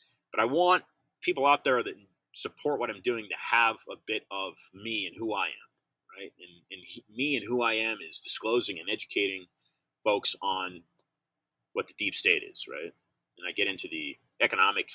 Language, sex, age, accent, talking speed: English, male, 30-49, American, 195 wpm